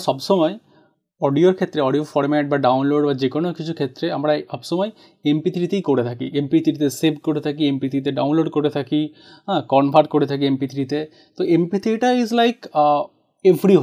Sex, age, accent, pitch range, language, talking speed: male, 30-49, native, 145-185 Hz, Bengali, 145 wpm